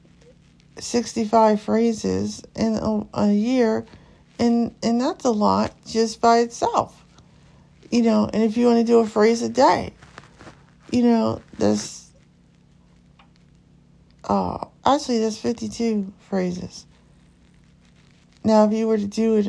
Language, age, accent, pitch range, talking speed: English, 50-69, American, 200-245 Hz, 125 wpm